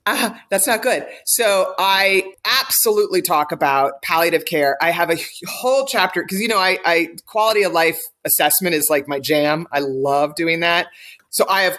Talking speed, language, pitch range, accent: 185 wpm, English, 160-215 Hz, American